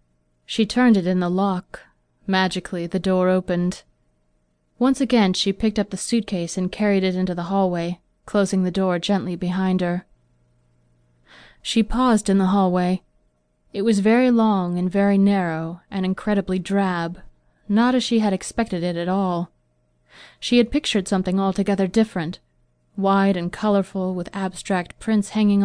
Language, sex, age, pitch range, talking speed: English, female, 30-49, 175-205 Hz, 150 wpm